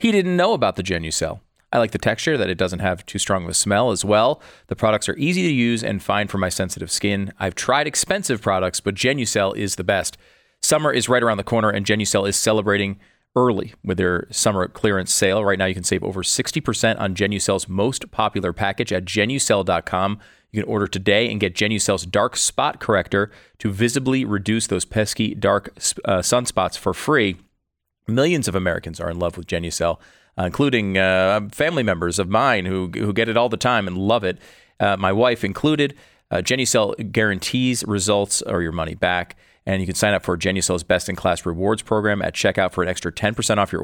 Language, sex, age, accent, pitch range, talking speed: English, male, 30-49, American, 95-115 Hz, 200 wpm